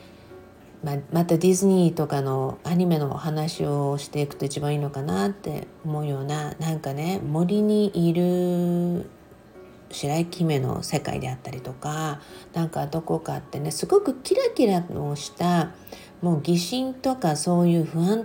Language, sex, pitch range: Japanese, female, 155-205 Hz